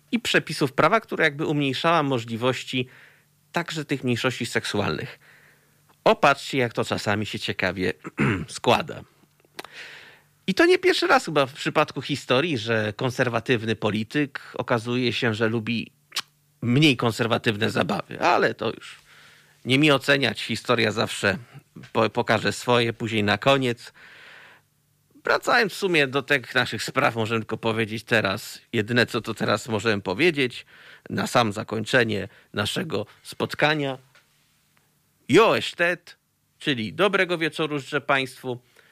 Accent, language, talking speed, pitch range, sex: native, Polish, 120 wpm, 115-145 Hz, male